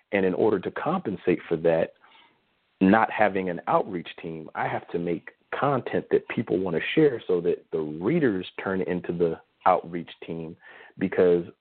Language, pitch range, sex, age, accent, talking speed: English, 85-110 Hz, male, 40-59, American, 165 wpm